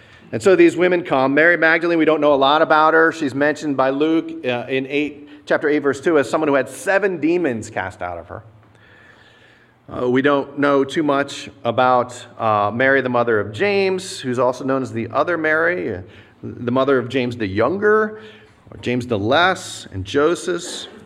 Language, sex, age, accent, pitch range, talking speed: English, male, 40-59, American, 115-160 Hz, 190 wpm